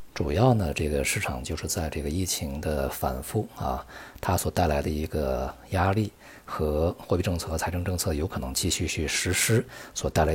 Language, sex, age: Chinese, male, 50-69